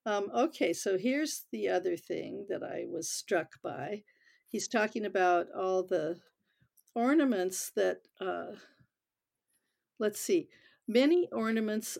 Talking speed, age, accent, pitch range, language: 120 wpm, 60-79, American, 190-250 Hz, English